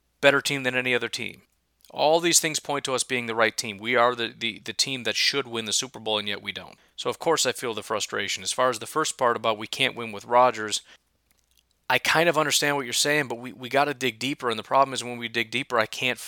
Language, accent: English, American